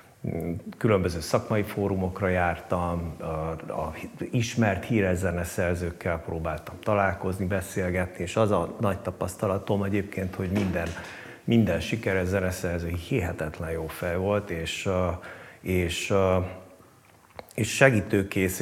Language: Hungarian